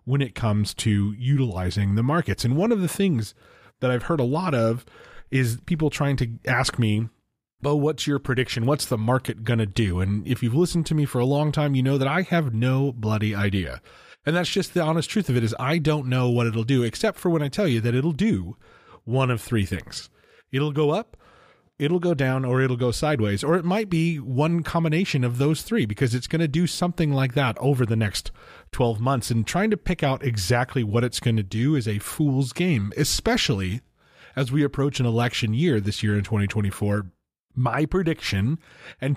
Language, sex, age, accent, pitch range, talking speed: English, male, 30-49, American, 115-155 Hz, 215 wpm